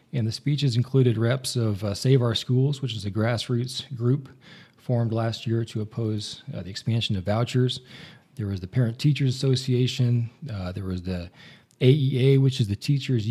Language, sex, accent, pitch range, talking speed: English, male, American, 115-135 Hz, 180 wpm